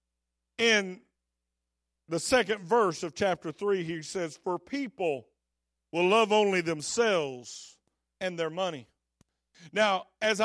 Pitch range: 150-245 Hz